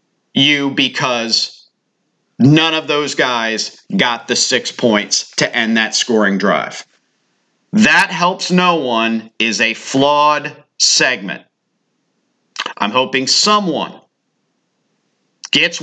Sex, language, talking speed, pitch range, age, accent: male, English, 100 wpm, 130-175 Hz, 50-69, American